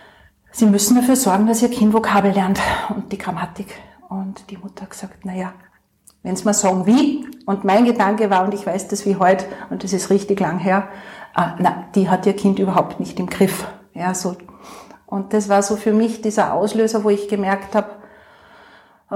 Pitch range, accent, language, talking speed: 200-220 Hz, Austrian, German, 195 wpm